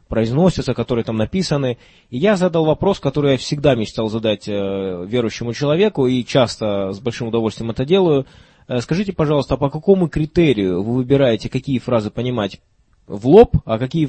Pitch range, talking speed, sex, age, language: 110-145 Hz, 160 wpm, male, 20-39, Russian